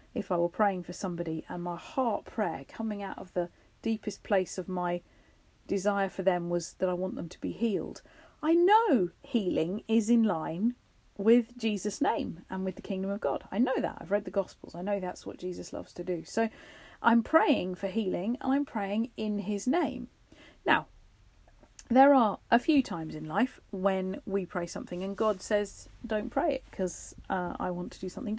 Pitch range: 185-240 Hz